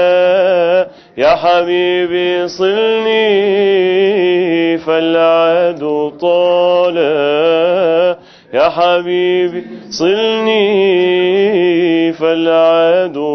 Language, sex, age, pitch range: English, male, 30-49, 165-180 Hz